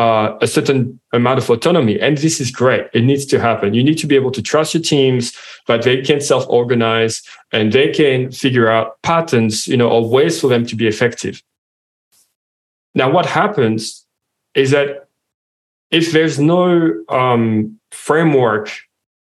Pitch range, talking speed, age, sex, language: 115-140 Hz, 160 wpm, 20-39, male, English